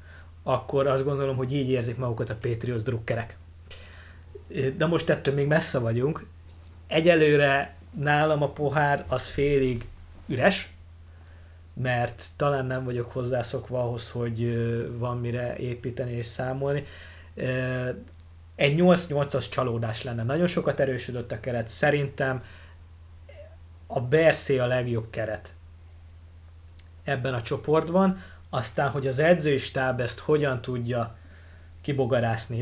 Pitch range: 90-135 Hz